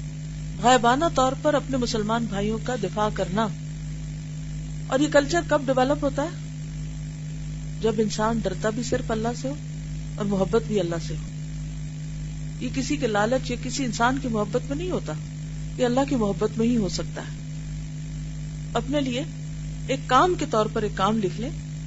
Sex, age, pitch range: female, 40-59, 150-220 Hz